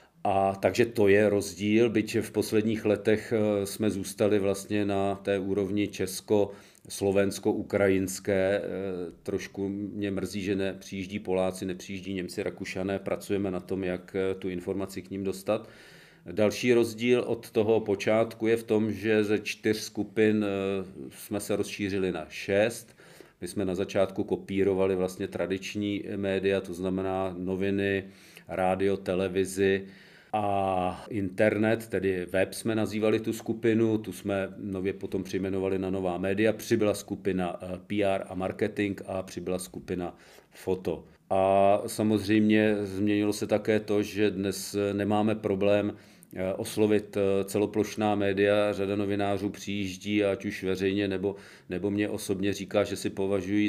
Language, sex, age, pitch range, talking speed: Czech, male, 40-59, 95-105 Hz, 130 wpm